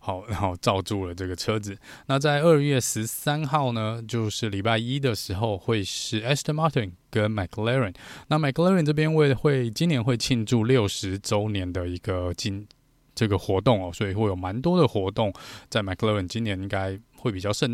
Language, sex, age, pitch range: Chinese, male, 20-39, 100-125 Hz